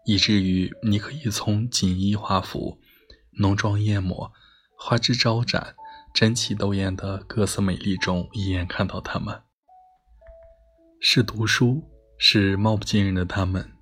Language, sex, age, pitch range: Chinese, male, 20-39, 95-130 Hz